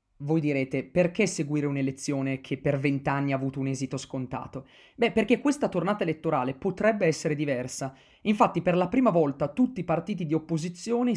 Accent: native